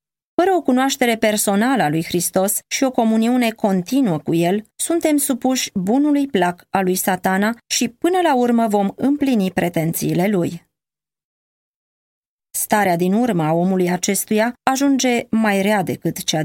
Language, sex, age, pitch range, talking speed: Romanian, female, 20-39, 185-245 Hz, 140 wpm